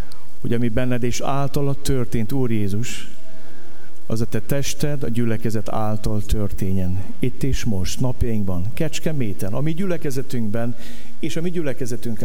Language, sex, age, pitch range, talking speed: Hungarian, male, 50-69, 105-155 Hz, 135 wpm